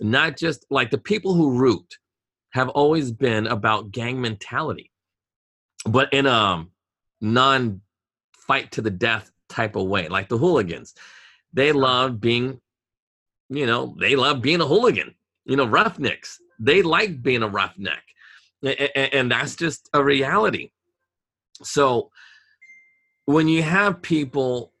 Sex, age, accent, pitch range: male, 30-49, American, 110-140 Hz